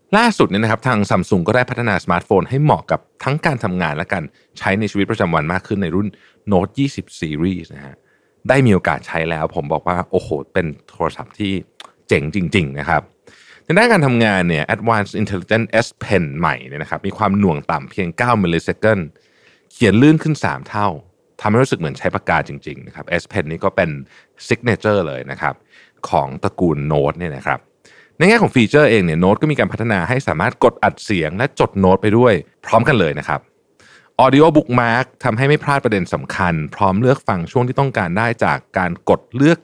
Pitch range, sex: 90-130 Hz, male